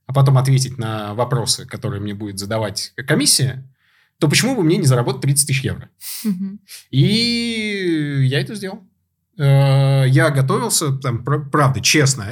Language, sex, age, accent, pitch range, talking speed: Russian, male, 20-39, native, 130-160 Hz, 125 wpm